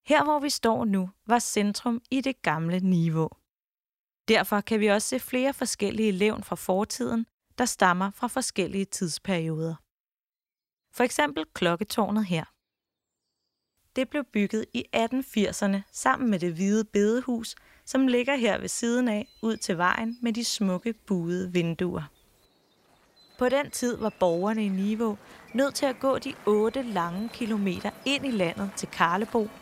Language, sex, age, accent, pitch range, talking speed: English, female, 20-39, Danish, 185-240 Hz, 150 wpm